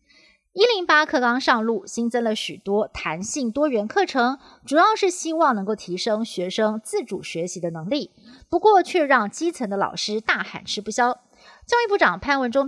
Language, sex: Chinese, female